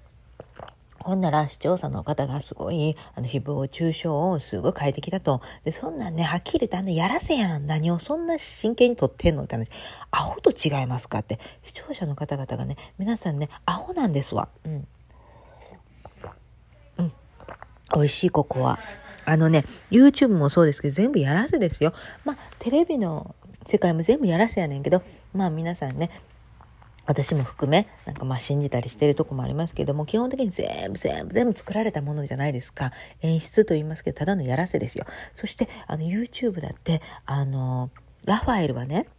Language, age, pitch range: Japanese, 40-59, 140-210 Hz